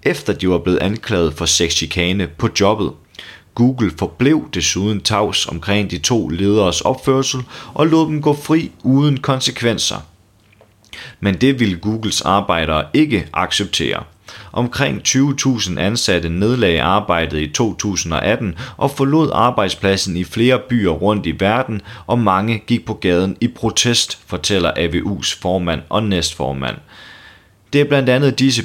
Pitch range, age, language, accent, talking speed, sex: 90-120 Hz, 30-49, Danish, native, 135 wpm, male